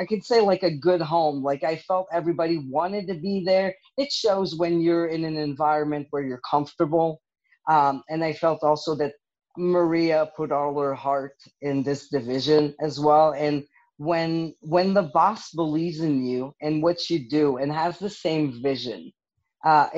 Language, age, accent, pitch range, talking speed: English, 40-59, American, 140-170 Hz, 175 wpm